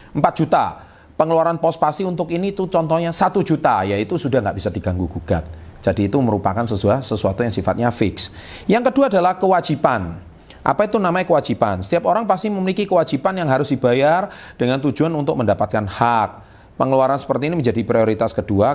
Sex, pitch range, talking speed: male, 105-135 Hz, 175 wpm